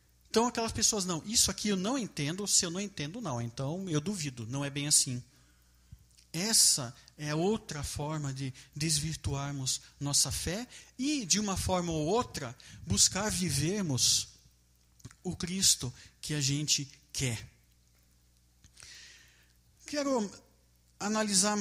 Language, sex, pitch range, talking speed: Portuguese, male, 130-210 Hz, 125 wpm